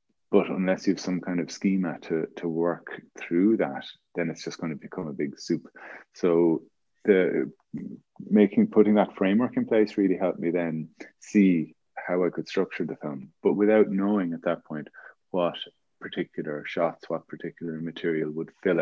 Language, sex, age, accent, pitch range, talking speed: English, male, 30-49, Irish, 80-95 Hz, 175 wpm